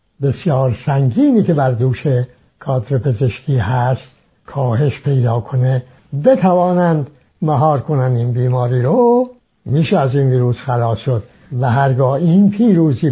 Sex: male